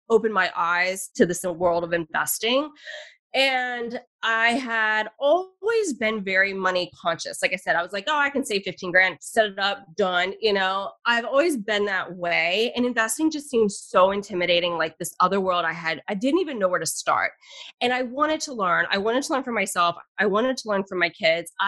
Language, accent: English, American